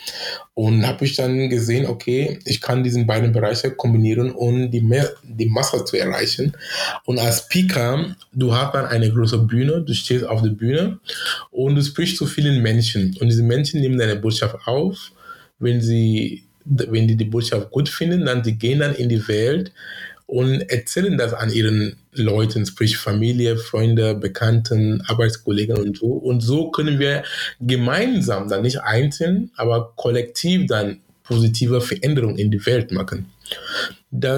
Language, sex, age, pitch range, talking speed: German, male, 20-39, 115-135 Hz, 160 wpm